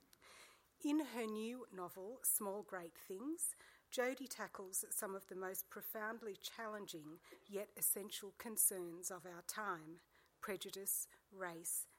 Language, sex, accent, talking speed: English, female, Australian, 115 wpm